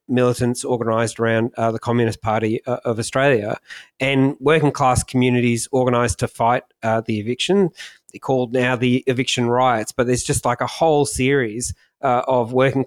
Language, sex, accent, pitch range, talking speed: English, male, Australian, 115-130 Hz, 170 wpm